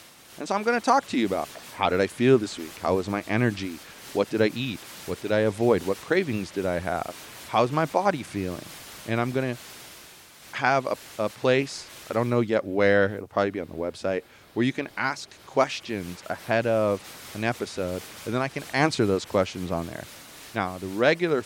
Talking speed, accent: 215 wpm, American